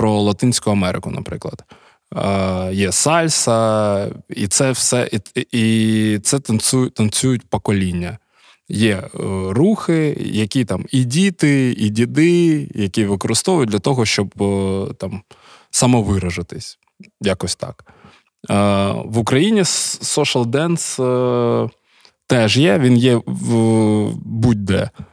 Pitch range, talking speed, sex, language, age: 105-130 Hz, 110 wpm, male, Ukrainian, 20-39